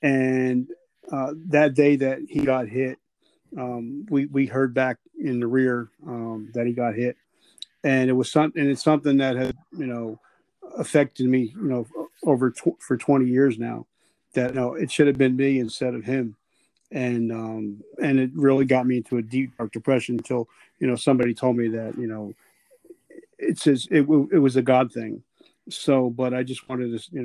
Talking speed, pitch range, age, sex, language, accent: 200 wpm, 120-135 Hz, 40-59, male, English, American